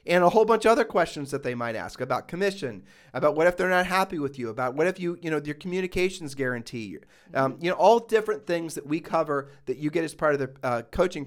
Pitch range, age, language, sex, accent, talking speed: 135-190 Hz, 40-59, English, male, American, 255 wpm